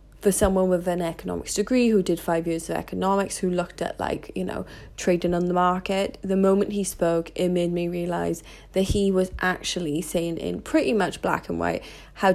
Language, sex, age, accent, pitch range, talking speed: English, female, 20-39, British, 170-200 Hz, 205 wpm